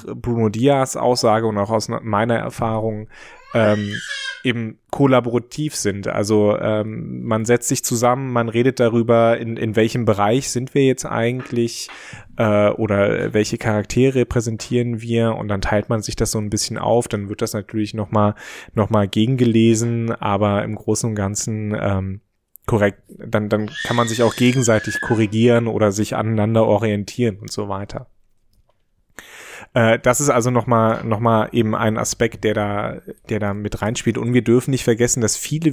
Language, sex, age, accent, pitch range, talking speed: German, male, 20-39, German, 105-120 Hz, 165 wpm